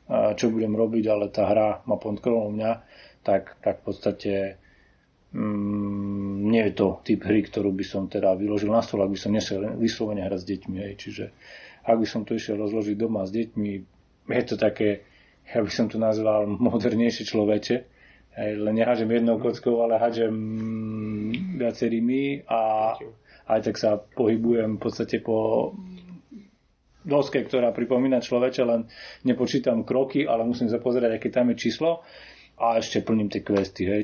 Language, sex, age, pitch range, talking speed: Slovak, male, 30-49, 105-115 Hz, 160 wpm